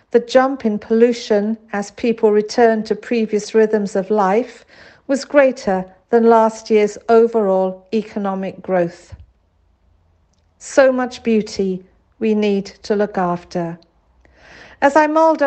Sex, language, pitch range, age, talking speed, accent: female, English, 195-235 Hz, 50-69, 120 wpm, British